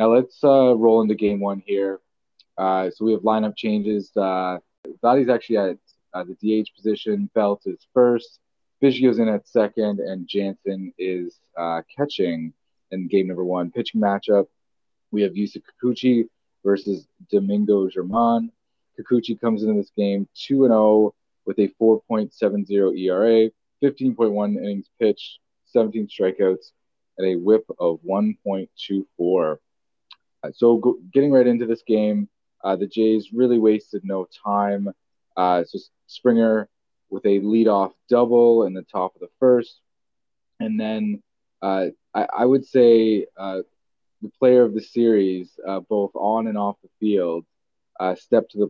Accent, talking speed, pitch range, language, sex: American, 145 wpm, 95-115 Hz, English, male